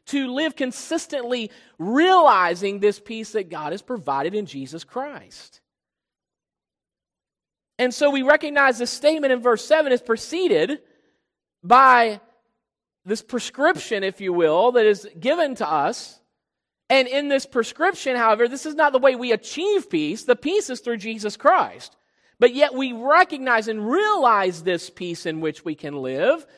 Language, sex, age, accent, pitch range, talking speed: English, male, 40-59, American, 195-280 Hz, 150 wpm